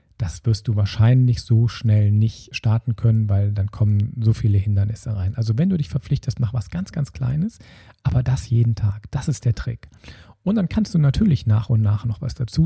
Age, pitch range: 40-59, 105-125 Hz